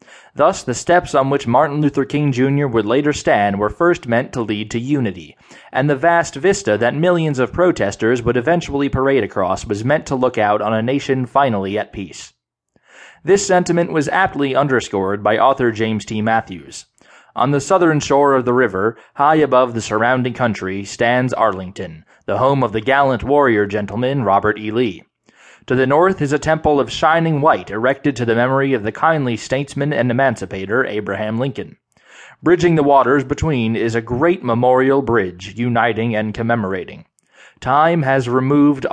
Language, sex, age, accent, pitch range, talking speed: English, male, 20-39, American, 110-150 Hz, 175 wpm